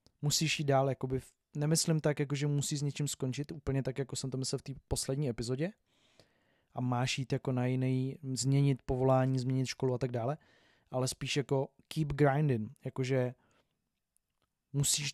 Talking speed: 165 wpm